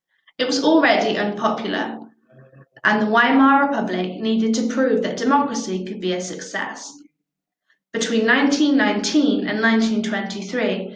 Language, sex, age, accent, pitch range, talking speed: English, female, 10-29, British, 195-245 Hz, 115 wpm